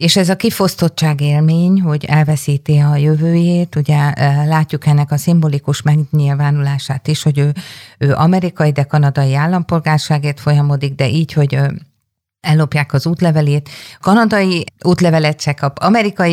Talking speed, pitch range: 130 wpm, 140-165 Hz